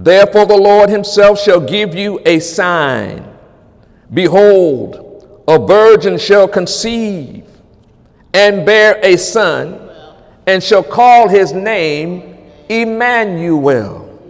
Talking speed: 100 wpm